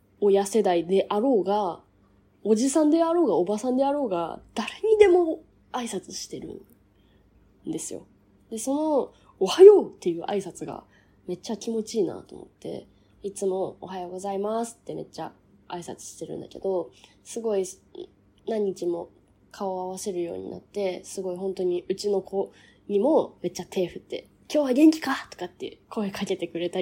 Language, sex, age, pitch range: Japanese, female, 20-39, 175-265 Hz